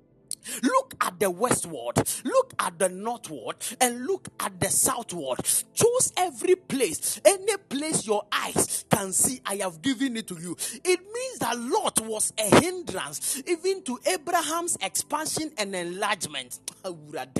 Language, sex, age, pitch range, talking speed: English, male, 40-59, 215-365 Hz, 145 wpm